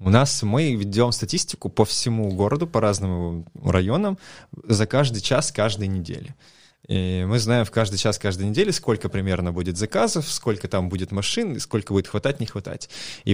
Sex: male